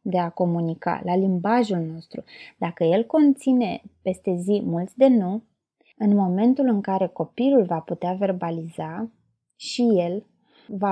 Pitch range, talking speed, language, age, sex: 185-240 Hz, 135 wpm, Romanian, 20-39, female